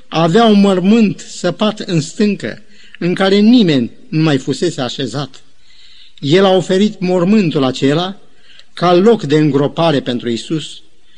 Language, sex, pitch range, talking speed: Romanian, male, 155-210 Hz, 130 wpm